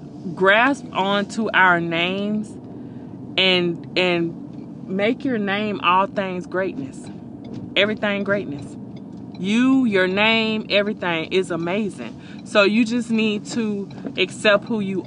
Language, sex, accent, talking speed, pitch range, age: English, female, American, 110 wpm, 170-220 Hz, 20-39